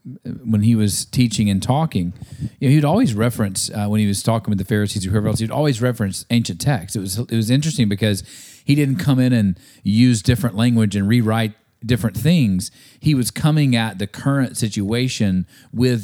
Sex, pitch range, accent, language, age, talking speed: male, 105-130 Hz, American, English, 40-59, 200 wpm